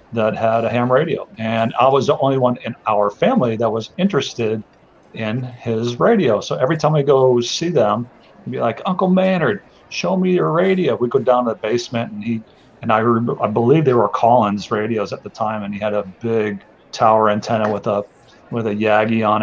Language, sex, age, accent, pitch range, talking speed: English, male, 40-59, American, 110-120 Hz, 210 wpm